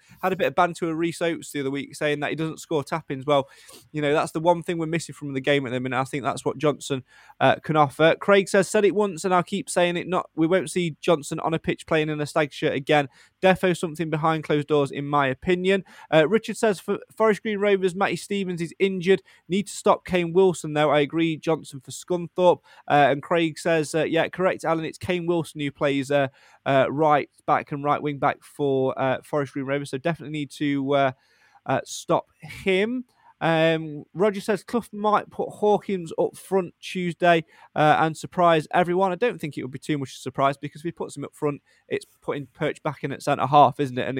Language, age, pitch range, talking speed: English, 20-39, 145-180 Hz, 230 wpm